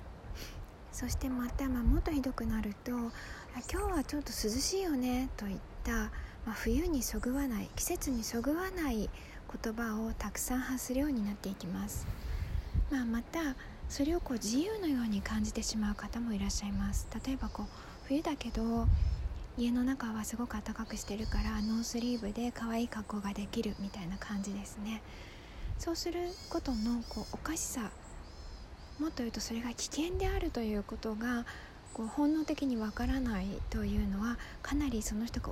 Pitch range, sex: 200-260 Hz, female